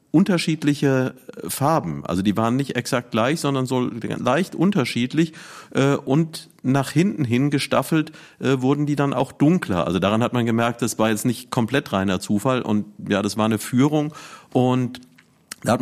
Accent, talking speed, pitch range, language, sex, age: German, 165 wpm, 110-140 Hz, German, male, 40-59